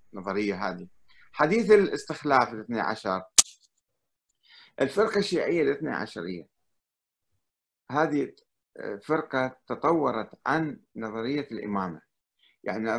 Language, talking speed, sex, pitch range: Arabic, 75 wpm, male, 115-165 Hz